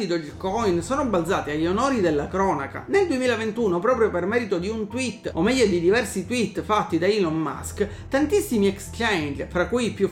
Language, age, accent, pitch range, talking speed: Italian, 30-49, native, 185-265 Hz, 180 wpm